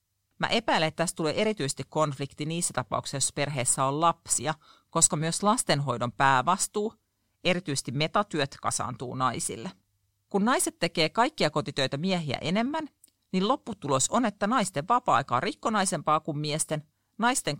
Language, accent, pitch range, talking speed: Finnish, native, 135-205 Hz, 135 wpm